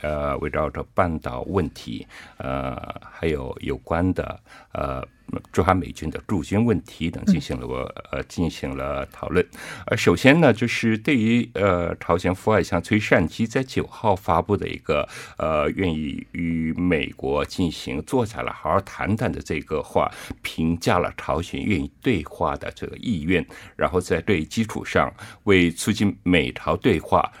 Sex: male